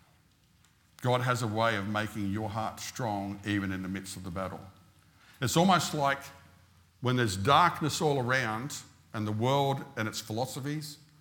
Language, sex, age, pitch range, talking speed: English, male, 50-69, 105-145 Hz, 160 wpm